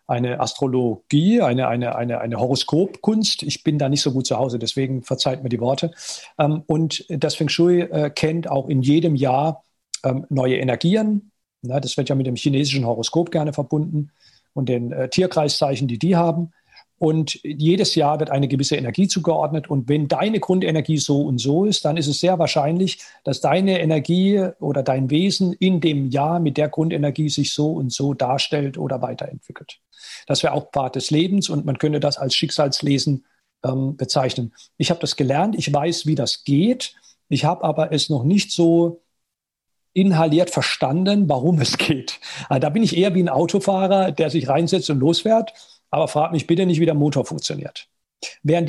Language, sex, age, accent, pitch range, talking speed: German, male, 50-69, German, 140-170 Hz, 175 wpm